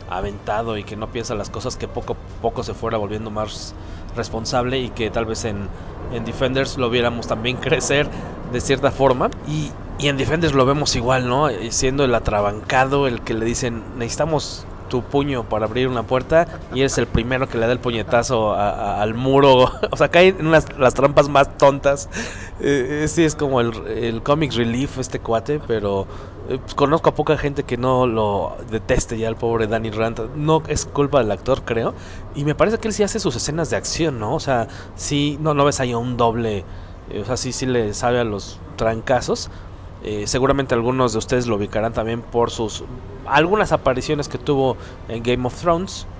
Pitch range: 110-135 Hz